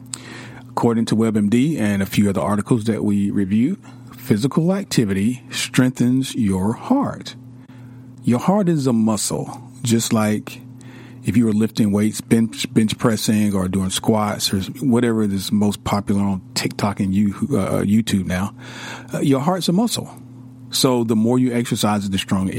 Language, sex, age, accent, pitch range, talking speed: English, male, 40-59, American, 105-130 Hz, 145 wpm